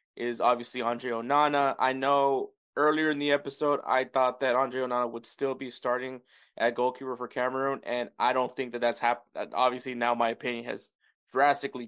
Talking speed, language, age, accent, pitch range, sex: 180 wpm, English, 20-39, American, 125-145 Hz, male